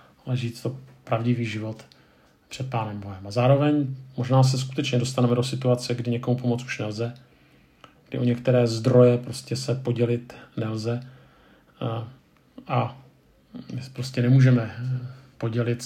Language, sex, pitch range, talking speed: Czech, male, 115-130 Hz, 130 wpm